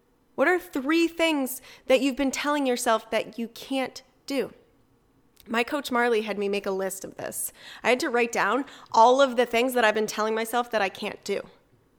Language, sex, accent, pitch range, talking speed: English, female, American, 240-290 Hz, 205 wpm